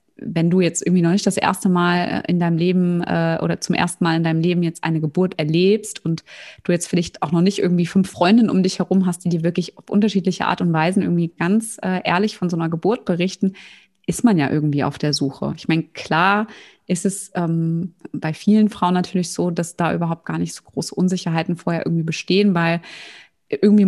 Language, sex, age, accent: German, female, 20-39, German